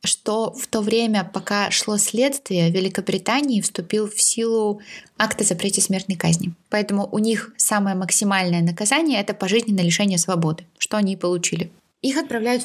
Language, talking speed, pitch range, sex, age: Russian, 155 wpm, 185-220 Hz, female, 20-39